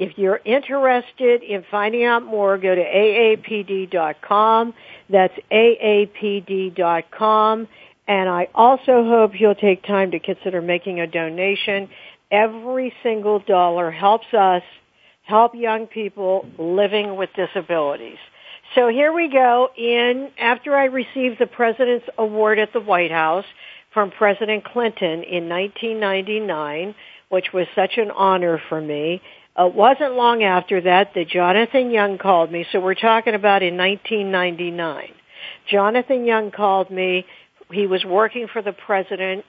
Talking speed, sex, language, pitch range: 135 wpm, female, English, 185-230 Hz